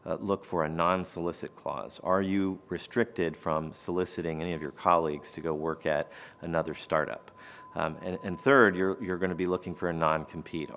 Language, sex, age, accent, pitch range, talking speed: English, male, 40-59, American, 80-95 Hz, 185 wpm